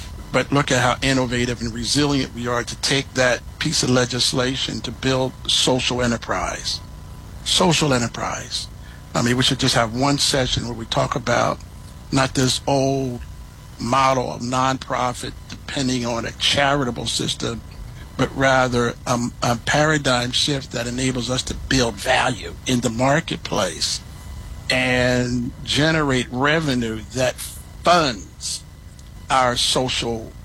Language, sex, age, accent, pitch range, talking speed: English, male, 60-79, American, 120-135 Hz, 130 wpm